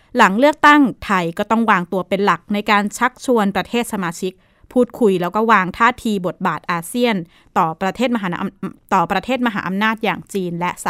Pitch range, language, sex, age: 185-235 Hz, Thai, female, 20-39